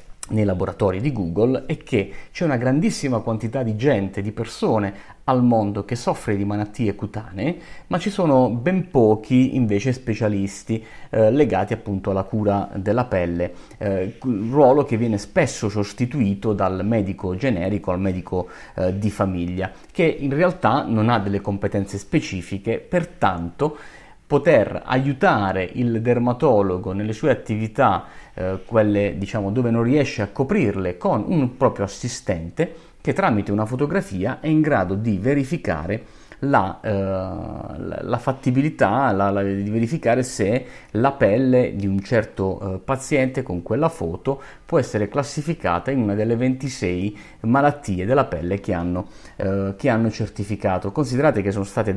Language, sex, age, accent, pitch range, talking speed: Italian, male, 30-49, native, 100-125 Hz, 145 wpm